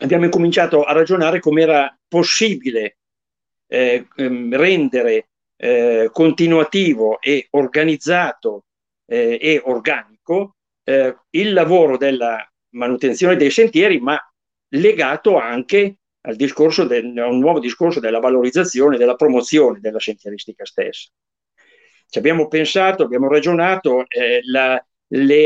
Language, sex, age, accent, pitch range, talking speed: Italian, male, 50-69, native, 130-180 Hz, 115 wpm